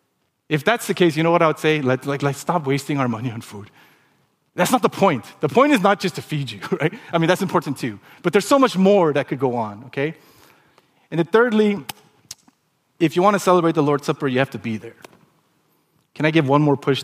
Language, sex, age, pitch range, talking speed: English, male, 30-49, 125-155 Hz, 235 wpm